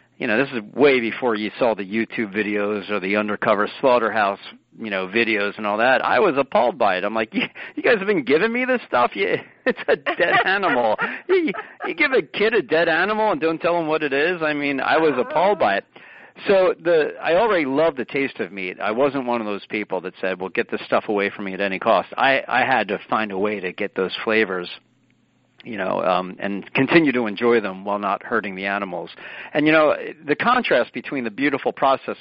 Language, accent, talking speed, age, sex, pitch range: English, American, 225 wpm, 50-69, male, 100-140 Hz